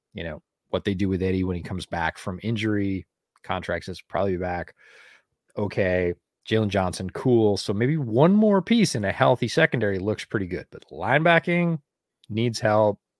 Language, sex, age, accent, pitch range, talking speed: English, male, 30-49, American, 90-120 Hz, 170 wpm